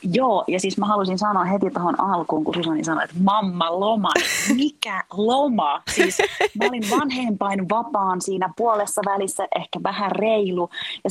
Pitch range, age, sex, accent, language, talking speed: 180-235 Hz, 30-49, female, native, Finnish, 155 wpm